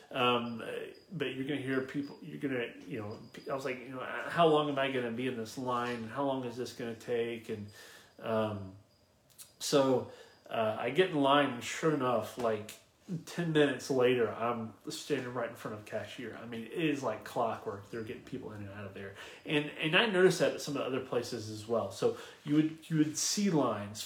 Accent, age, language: American, 30-49, English